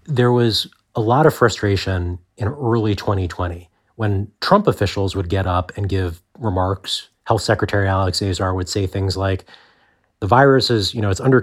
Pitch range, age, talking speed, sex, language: 95-115 Hz, 30-49, 175 wpm, male, English